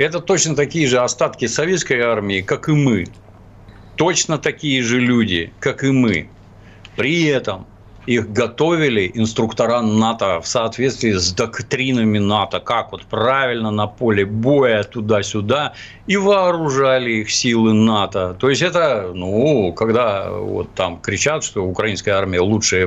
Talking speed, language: 135 wpm, Russian